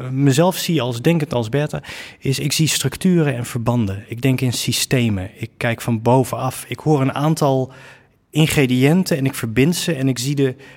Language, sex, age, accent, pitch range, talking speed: Dutch, male, 20-39, Dutch, 120-145 Hz, 185 wpm